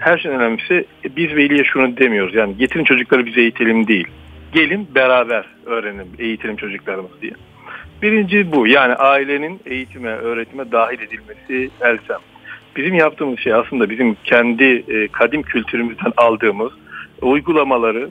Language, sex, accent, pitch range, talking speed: Turkish, male, native, 115-140 Hz, 125 wpm